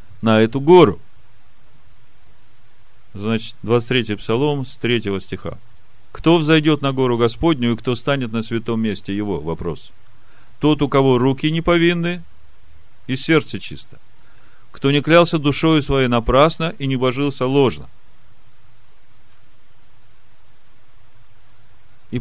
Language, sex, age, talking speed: Russian, male, 40-59, 115 wpm